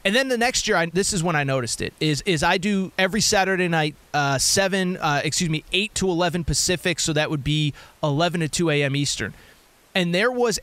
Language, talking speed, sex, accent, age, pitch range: English, 225 wpm, male, American, 30-49, 155-210 Hz